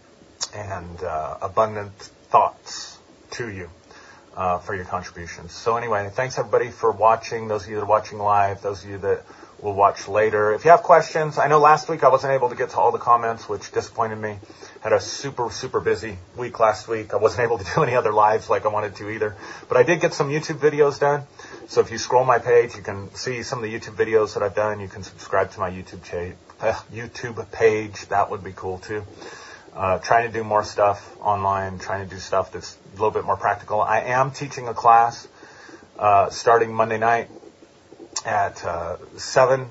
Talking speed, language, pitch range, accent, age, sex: 215 wpm, English, 105-130 Hz, American, 30-49, male